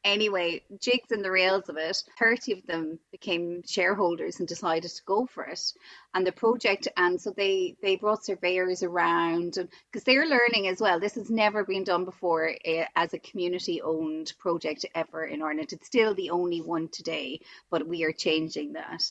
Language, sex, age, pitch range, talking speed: English, female, 30-49, 175-205 Hz, 180 wpm